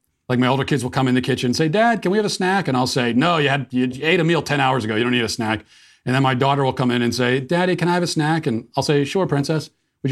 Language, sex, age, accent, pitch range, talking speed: English, male, 40-59, American, 100-135 Hz, 330 wpm